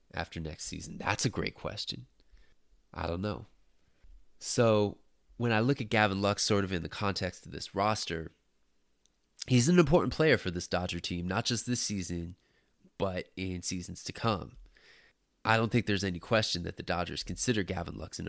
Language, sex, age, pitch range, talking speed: English, male, 20-39, 90-115 Hz, 180 wpm